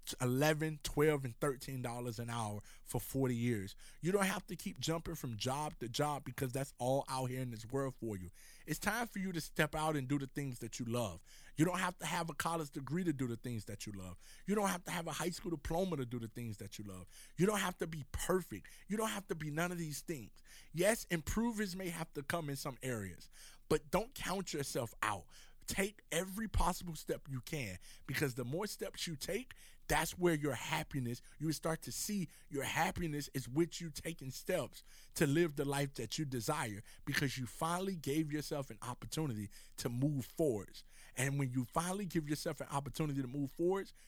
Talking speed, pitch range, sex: 215 wpm, 125-165 Hz, male